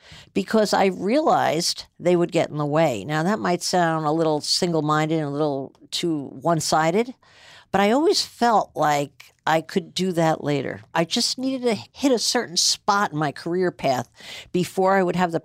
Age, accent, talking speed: 50-69, American, 185 wpm